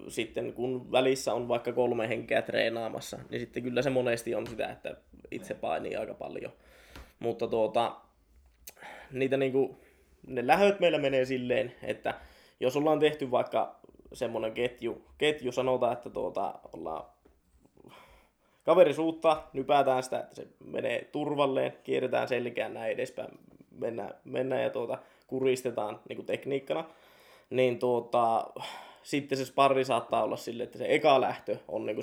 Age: 20-39